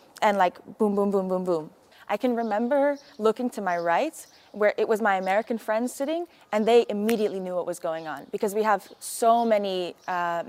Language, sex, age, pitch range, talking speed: English, female, 20-39, 190-255 Hz, 200 wpm